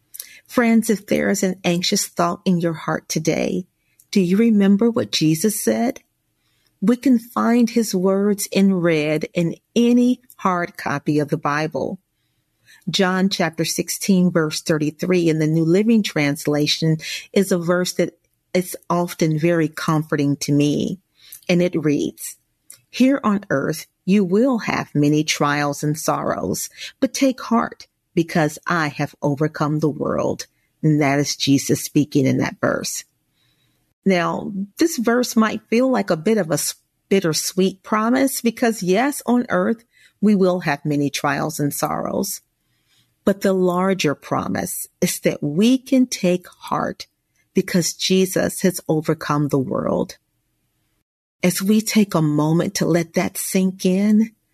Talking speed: 145 wpm